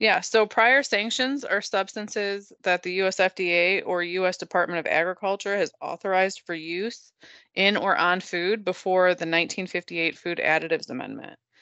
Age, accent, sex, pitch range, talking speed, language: 20-39, American, female, 165-190 Hz, 150 wpm, English